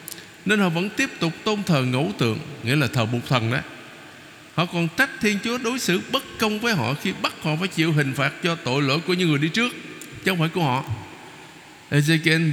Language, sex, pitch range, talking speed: Vietnamese, male, 150-210 Hz, 220 wpm